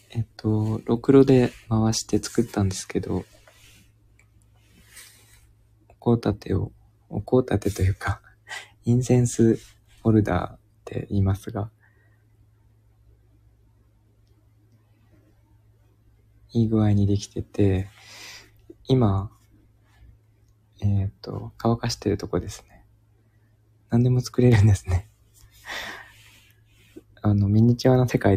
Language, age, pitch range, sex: Japanese, 20-39, 105-110 Hz, male